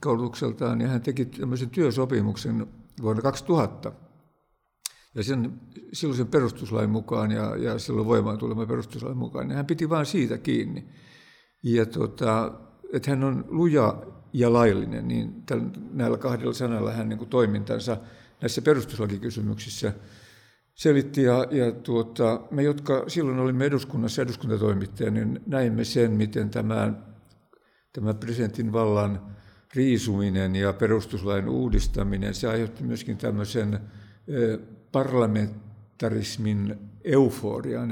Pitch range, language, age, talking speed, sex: 105-130 Hz, Finnish, 60-79, 110 wpm, male